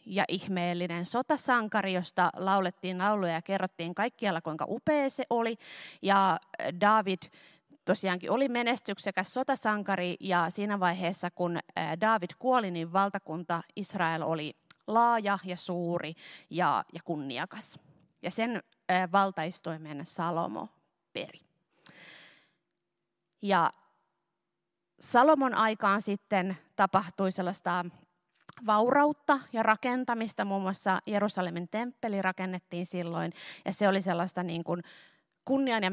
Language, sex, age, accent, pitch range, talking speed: Finnish, female, 30-49, native, 175-220 Hz, 105 wpm